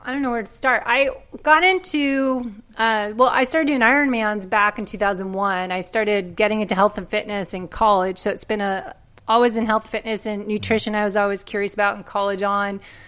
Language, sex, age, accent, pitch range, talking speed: English, female, 30-49, American, 195-235 Hz, 205 wpm